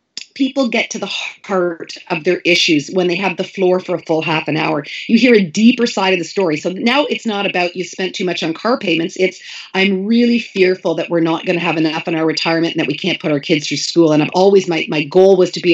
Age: 40-59